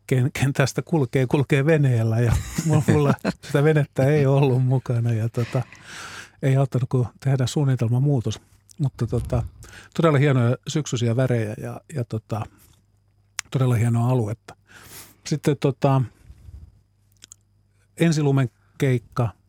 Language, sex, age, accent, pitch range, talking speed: Finnish, male, 50-69, native, 105-130 Hz, 115 wpm